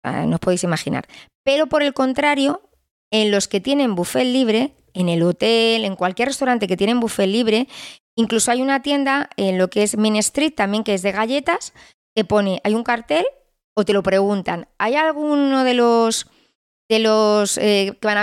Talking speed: 190 wpm